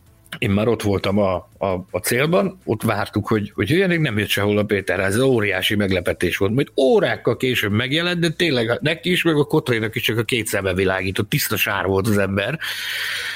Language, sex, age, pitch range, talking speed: Hungarian, male, 60-79, 105-155 Hz, 200 wpm